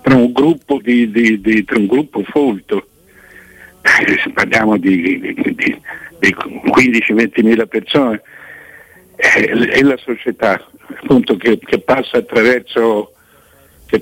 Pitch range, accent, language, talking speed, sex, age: 110-125 Hz, native, Italian, 125 wpm, male, 60-79